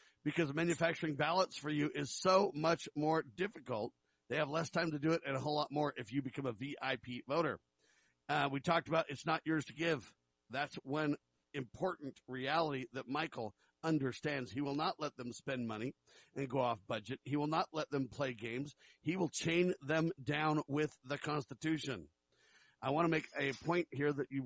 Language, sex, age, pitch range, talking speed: English, male, 50-69, 135-165 Hz, 195 wpm